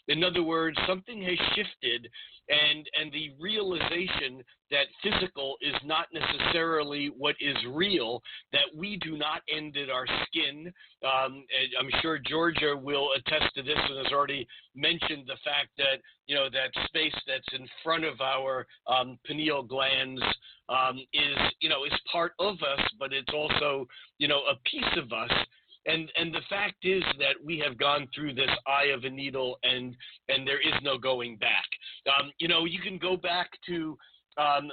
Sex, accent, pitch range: male, American, 135-165 Hz